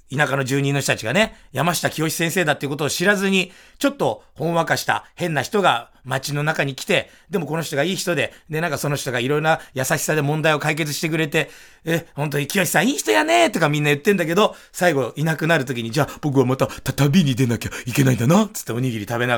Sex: male